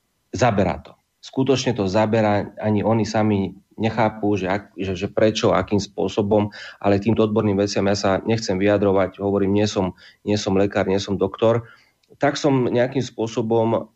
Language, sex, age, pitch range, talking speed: Slovak, male, 30-49, 100-115 Hz, 145 wpm